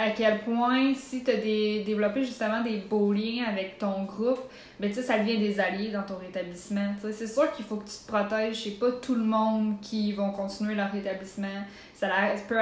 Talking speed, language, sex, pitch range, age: 230 wpm, French, female, 200-230 Hz, 20-39